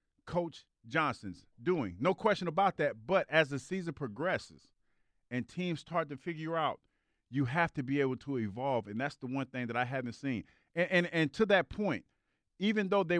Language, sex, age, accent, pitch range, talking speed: English, male, 40-59, American, 130-165 Hz, 195 wpm